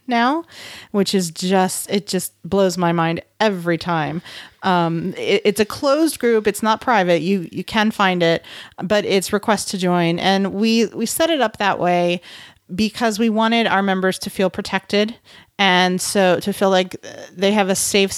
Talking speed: 180 wpm